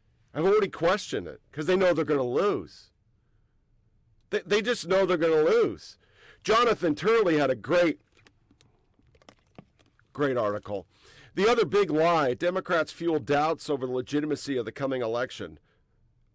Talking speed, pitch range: 145 wpm, 125-165 Hz